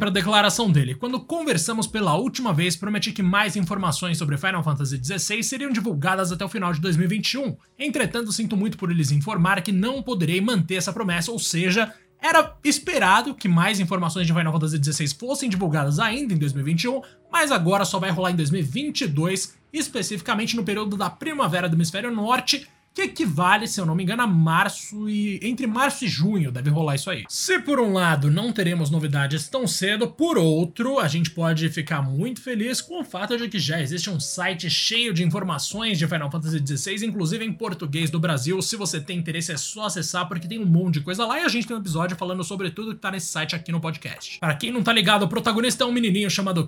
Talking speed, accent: 210 wpm, Brazilian